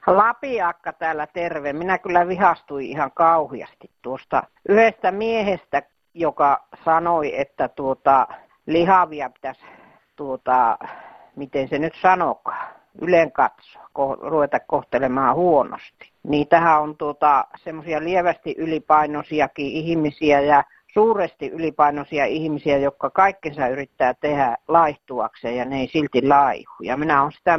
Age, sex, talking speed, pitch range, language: 50-69, female, 115 wpm, 140-170 Hz, Finnish